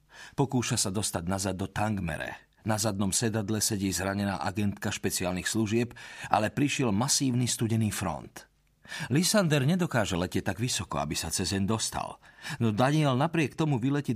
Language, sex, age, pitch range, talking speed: Slovak, male, 40-59, 95-120 Hz, 145 wpm